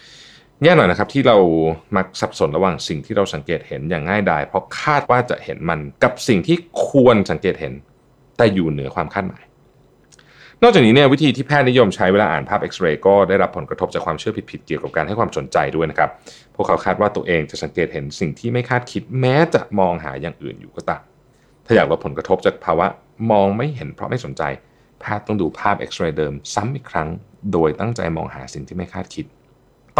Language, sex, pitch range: Thai, male, 80-125 Hz